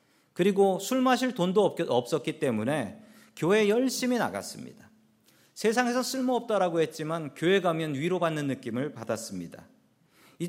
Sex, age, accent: male, 40-59, native